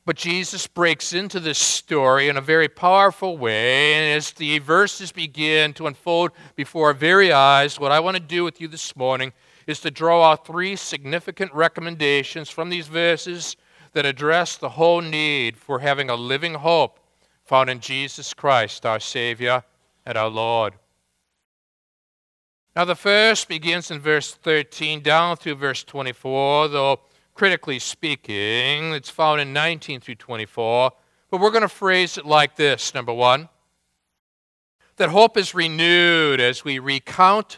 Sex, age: male, 50-69